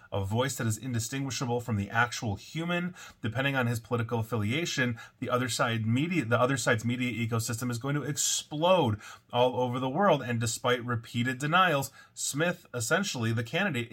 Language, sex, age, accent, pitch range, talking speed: English, male, 30-49, American, 120-155 Hz, 155 wpm